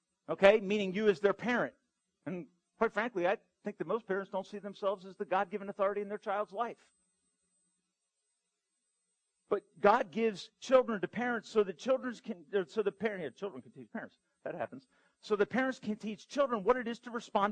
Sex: male